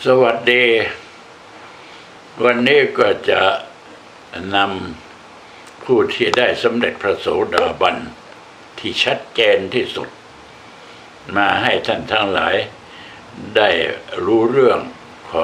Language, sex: Thai, male